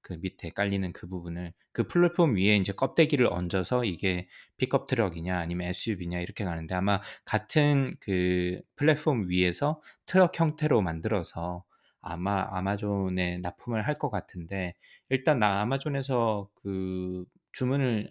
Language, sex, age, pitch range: Korean, male, 20-39, 90-130 Hz